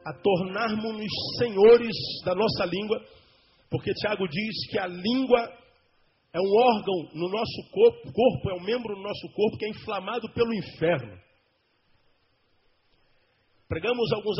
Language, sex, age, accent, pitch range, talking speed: Portuguese, male, 50-69, Brazilian, 150-215 Hz, 140 wpm